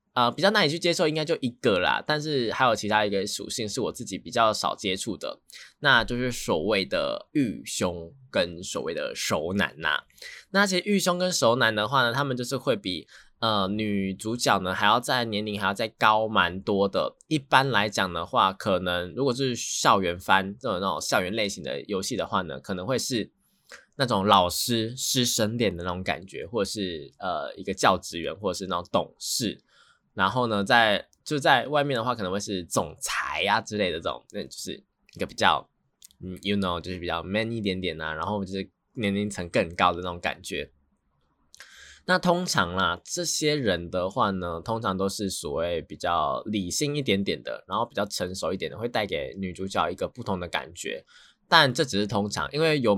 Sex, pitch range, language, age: male, 95-140 Hz, Chinese, 20-39